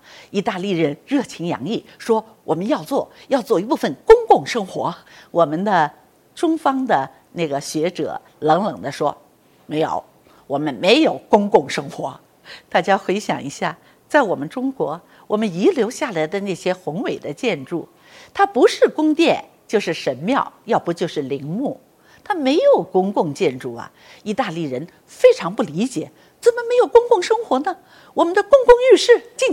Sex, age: female, 50-69